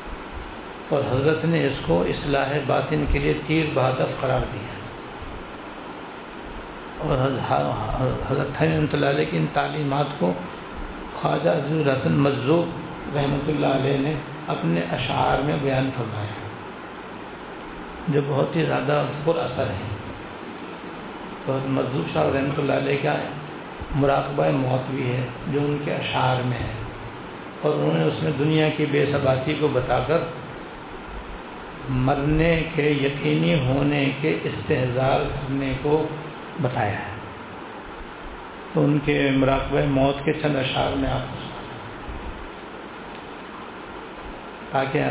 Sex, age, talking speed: male, 70-89, 125 wpm